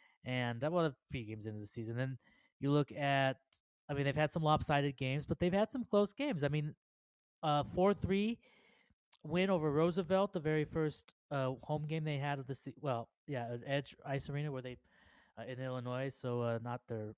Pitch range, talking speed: 125-160 Hz, 205 wpm